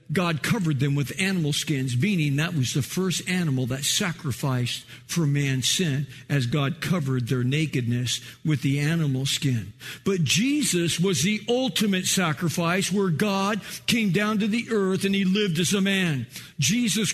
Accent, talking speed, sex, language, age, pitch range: American, 160 wpm, male, English, 50-69, 155-205 Hz